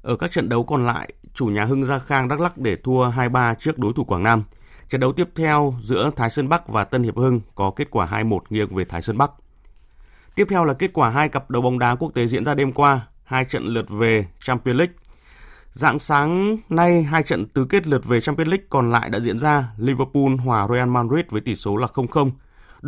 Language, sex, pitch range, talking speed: Vietnamese, male, 105-140 Hz, 235 wpm